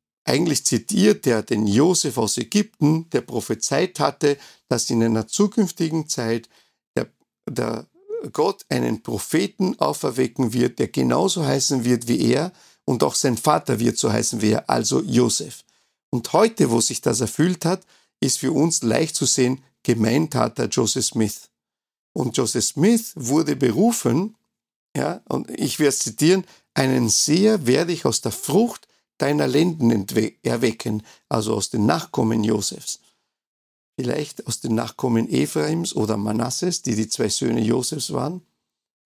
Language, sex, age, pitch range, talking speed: German, male, 50-69, 115-180 Hz, 145 wpm